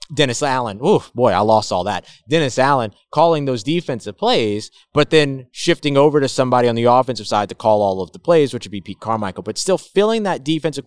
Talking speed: 220 wpm